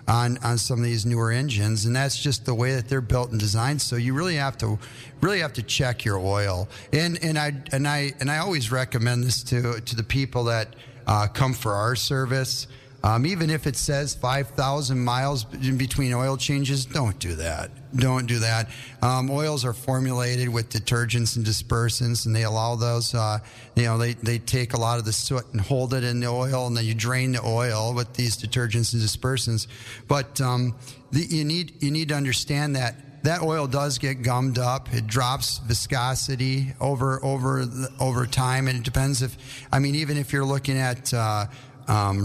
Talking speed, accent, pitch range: 200 wpm, American, 120-135 Hz